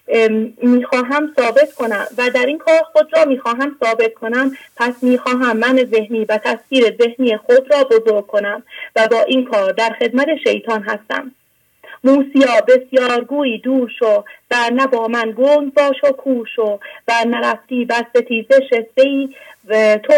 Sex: female